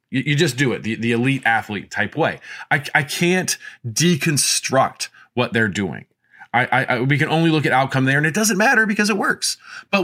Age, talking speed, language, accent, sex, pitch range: 20-39, 205 wpm, English, American, male, 115-155 Hz